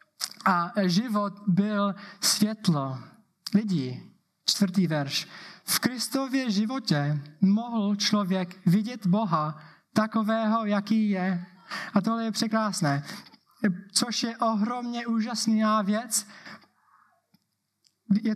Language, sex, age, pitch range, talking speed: Czech, male, 20-39, 185-225 Hz, 90 wpm